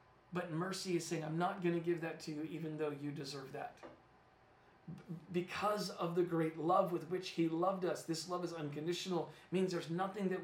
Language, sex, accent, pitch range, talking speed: English, male, American, 160-195 Hz, 215 wpm